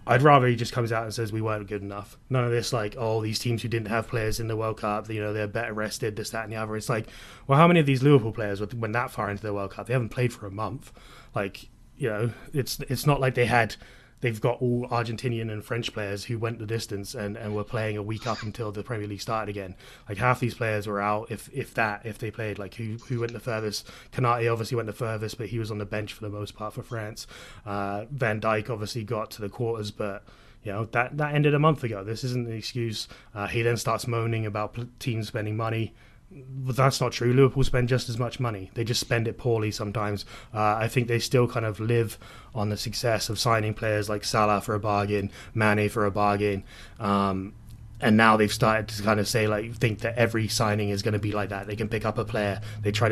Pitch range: 105-120 Hz